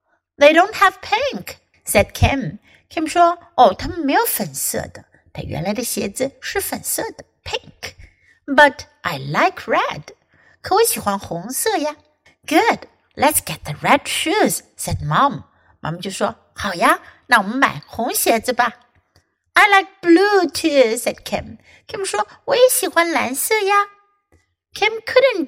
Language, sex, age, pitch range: Chinese, female, 60-79, 230-380 Hz